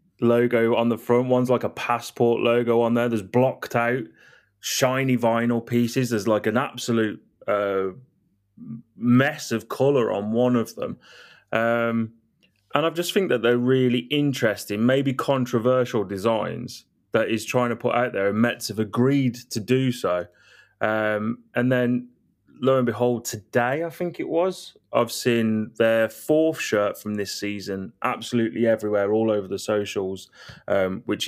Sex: male